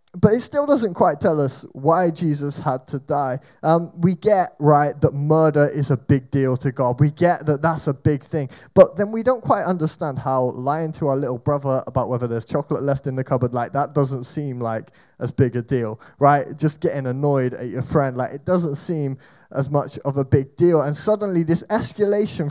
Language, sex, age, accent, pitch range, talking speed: English, male, 20-39, British, 135-170 Hz, 215 wpm